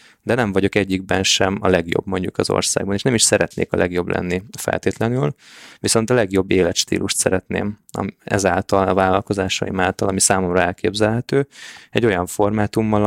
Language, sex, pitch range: Hungarian, male, 90-105 Hz